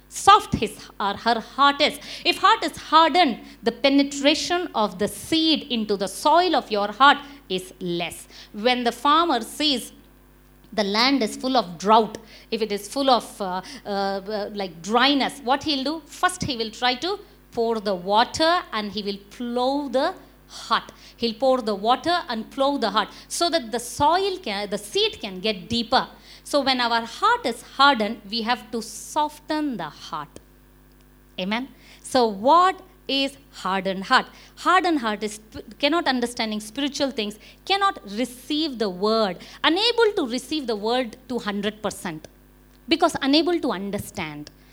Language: English